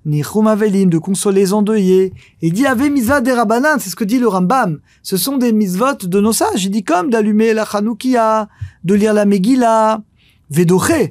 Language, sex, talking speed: French, male, 210 wpm